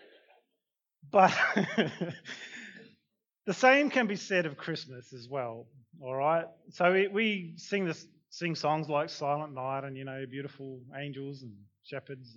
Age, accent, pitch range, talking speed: 30-49, Australian, 135-165 Hz, 130 wpm